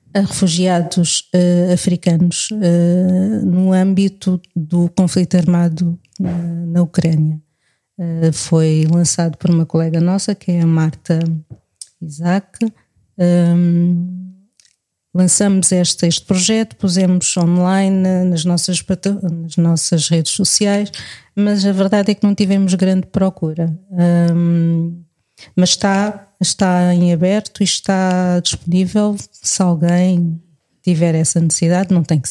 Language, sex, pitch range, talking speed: Portuguese, female, 170-190 Hz, 105 wpm